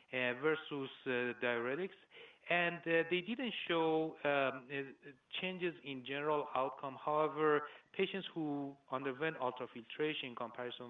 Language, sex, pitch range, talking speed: English, male, 125-155 Hz, 120 wpm